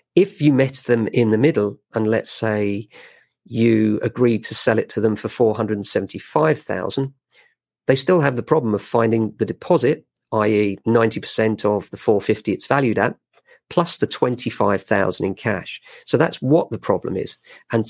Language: English